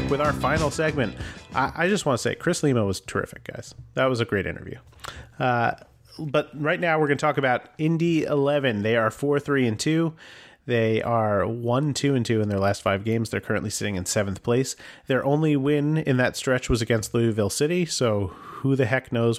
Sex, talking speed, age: male, 190 wpm, 30-49